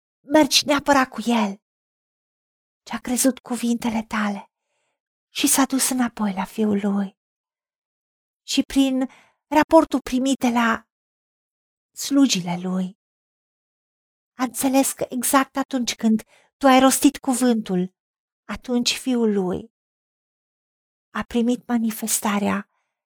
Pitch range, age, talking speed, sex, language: 220-270 Hz, 40-59, 100 wpm, female, Romanian